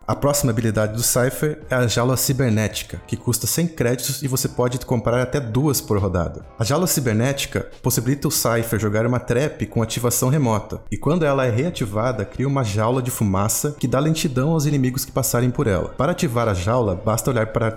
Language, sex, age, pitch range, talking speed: Portuguese, male, 20-39, 115-145 Hz, 205 wpm